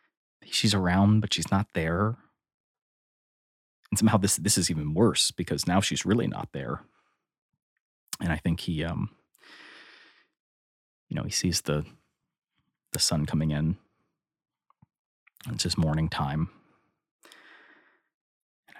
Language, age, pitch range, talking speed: English, 30-49, 80-95 Hz, 120 wpm